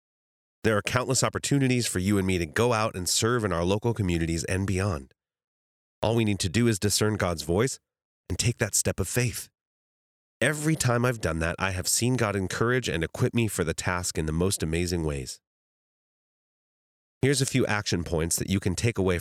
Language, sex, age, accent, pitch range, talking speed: English, male, 30-49, American, 85-120 Hz, 205 wpm